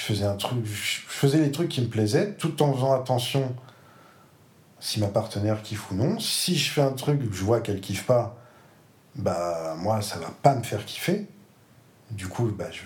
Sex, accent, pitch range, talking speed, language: male, French, 100-140 Hz, 205 wpm, French